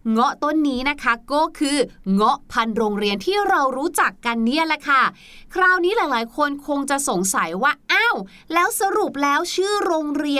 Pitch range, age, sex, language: 235-325 Hz, 20-39, female, Thai